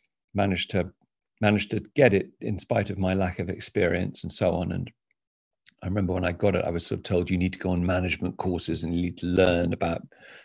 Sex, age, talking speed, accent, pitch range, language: male, 50-69, 235 wpm, British, 90-105 Hz, English